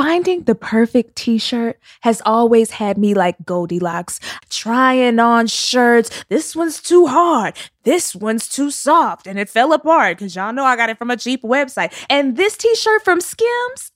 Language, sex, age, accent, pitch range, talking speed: English, female, 20-39, American, 220-315 Hz, 170 wpm